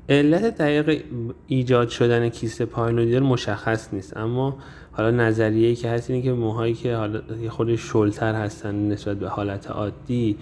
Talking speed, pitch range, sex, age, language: 145 wpm, 105-130 Hz, male, 20-39, Persian